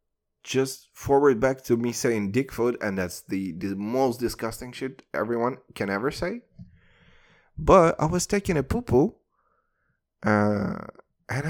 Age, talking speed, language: 20-39, 140 wpm, English